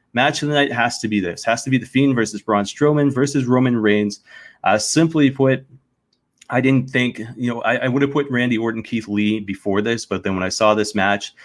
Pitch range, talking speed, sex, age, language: 105-125 Hz, 235 wpm, male, 30-49, English